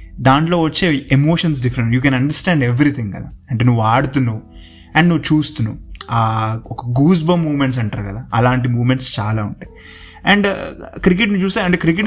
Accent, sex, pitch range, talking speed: native, male, 120-150 Hz, 150 wpm